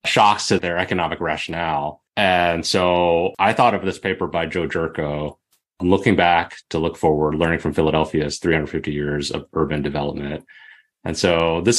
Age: 30-49